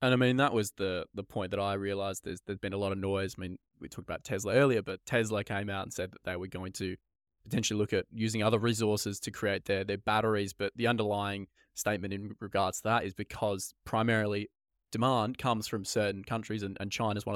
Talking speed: 230 wpm